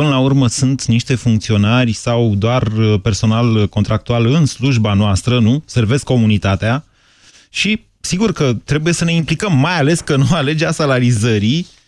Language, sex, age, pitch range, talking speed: Romanian, male, 30-49, 115-145 Hz, 145 wpm